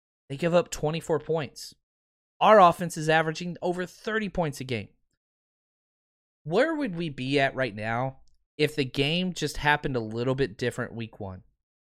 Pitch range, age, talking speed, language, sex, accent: 125-170 Hz, 30-49, 160 wpm, English, male, American